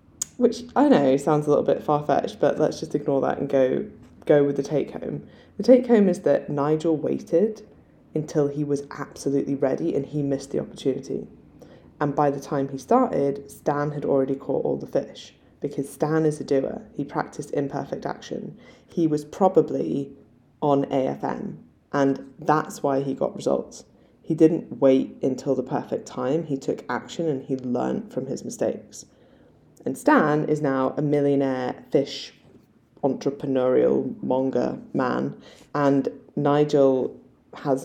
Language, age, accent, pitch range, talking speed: English, 10-29, British, 135-155 Hz, 155 wpm